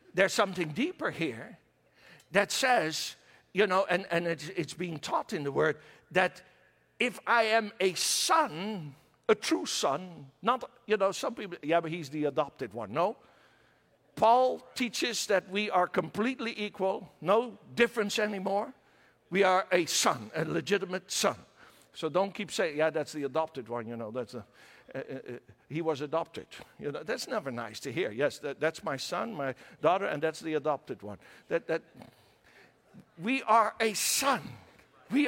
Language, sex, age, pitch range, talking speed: English, male, 60-79, 170-235 Hz, 170 wpm